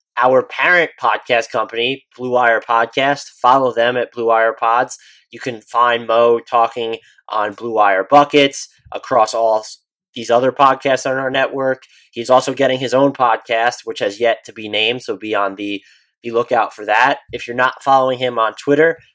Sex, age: male, 20-39